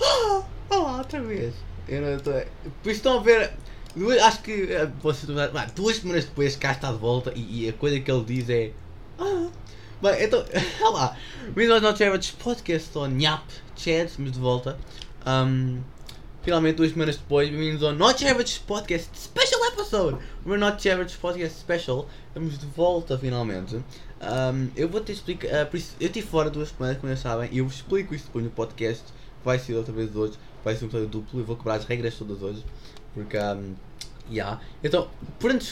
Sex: male